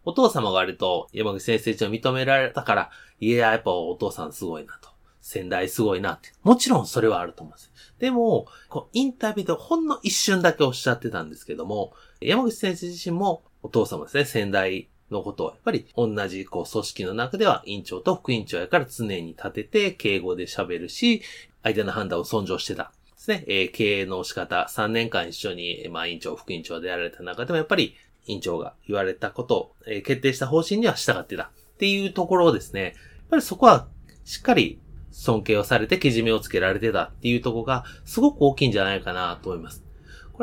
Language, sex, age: Japanese, male, 30-49